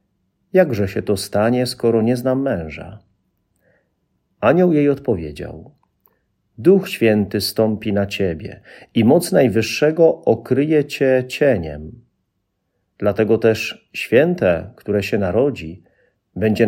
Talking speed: 105 wpm